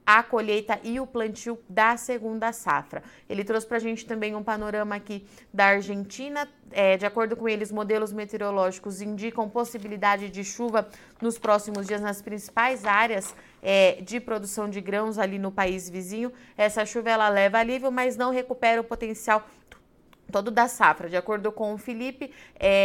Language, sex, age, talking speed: Portuguese, female, 30-49, 165 wpm